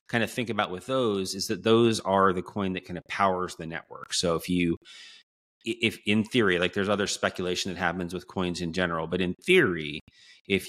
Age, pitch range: 30-49, 85-105 Hz